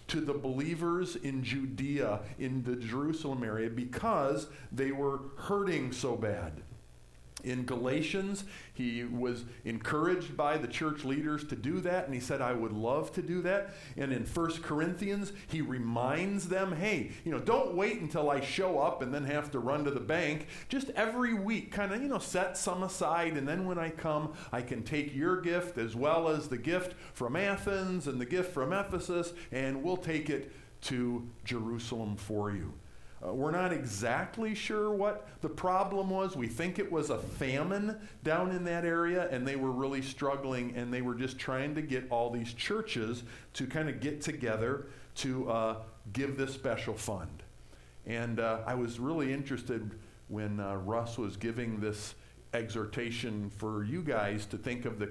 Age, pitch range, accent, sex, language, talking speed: 40-59, 115-170 Hz, American, male, English, 180 wpm